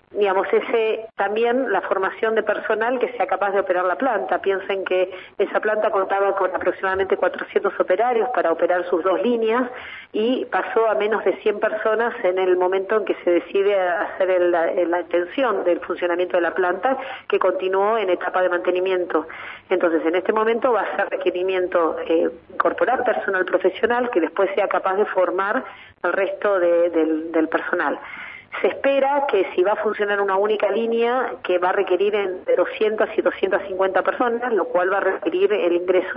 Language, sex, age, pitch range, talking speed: Spanish, female, 40-59, 180-215 Hz, 175 wpm